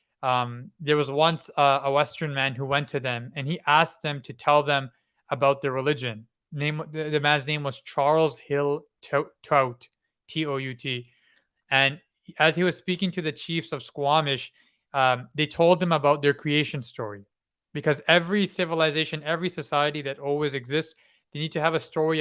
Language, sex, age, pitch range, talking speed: English, male, 20-39, 135-160 Hz, 175 wpm